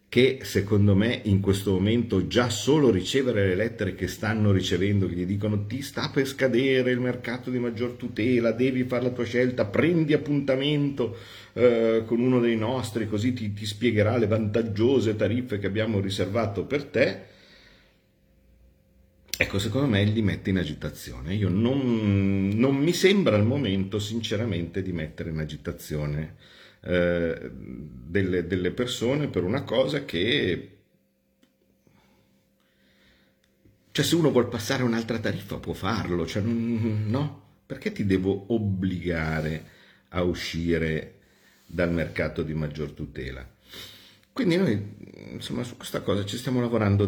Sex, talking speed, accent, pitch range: male, 135 wpm, native, 85-120 Hz